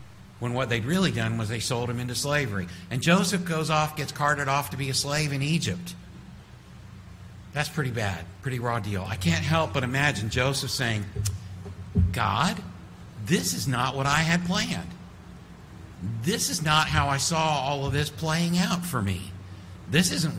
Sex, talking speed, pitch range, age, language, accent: male, 175 wpm, 95-150 Hz, 60-79, English, American